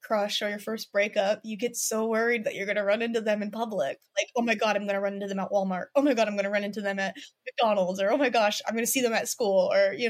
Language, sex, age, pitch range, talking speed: English, female, 20-39, 205-280 Hz, 295 wpm